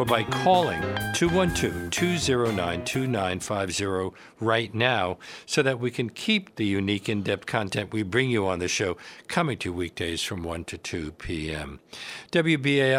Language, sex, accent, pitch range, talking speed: English, male, American, 105-135 Hz, 140 wpm